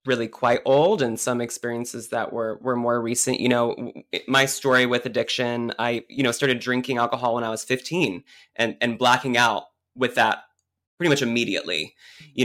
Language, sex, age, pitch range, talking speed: English, male, 20-39, 115-140 Hz, 180 wpm